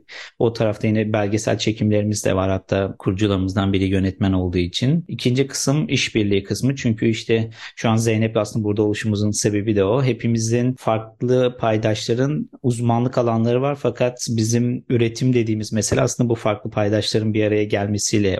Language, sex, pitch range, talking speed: Turkish, male, 105-125 Hz, 150 wpm